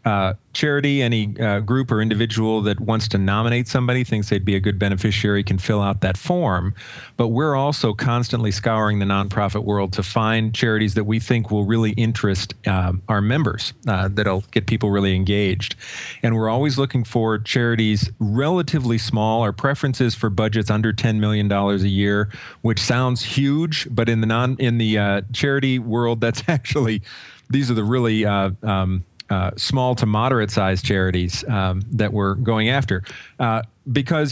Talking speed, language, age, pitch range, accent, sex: 175 wpm, English, 40-59, 105-125 Hz, American, male